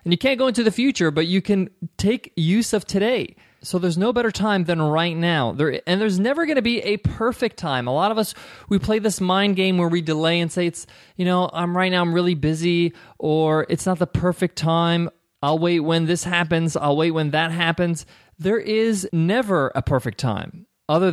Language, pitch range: English, 160-200 Hz